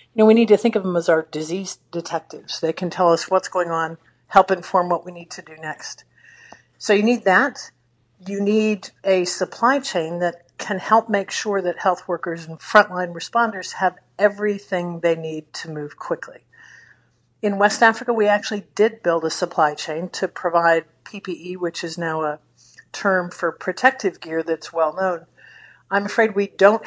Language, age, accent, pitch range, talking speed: English, 50-69, American, 165-205 Hz, 180 wpm